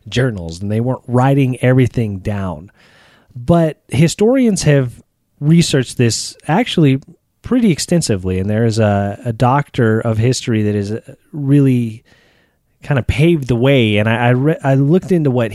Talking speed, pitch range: 150 wpm, 110-145 Hz